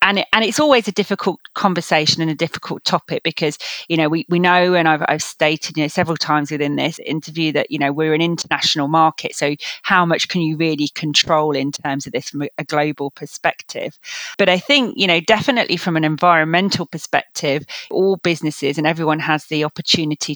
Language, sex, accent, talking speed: English, female, British, 200 wpm